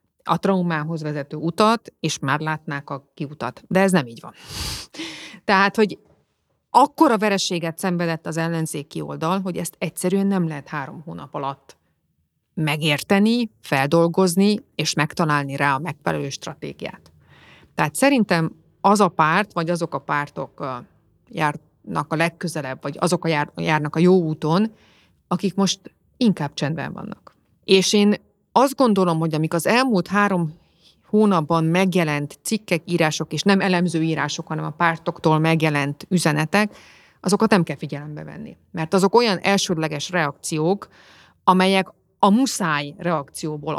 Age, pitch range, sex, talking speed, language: 30-49, 155-195 Hz, female, 140 wpm, Hungarian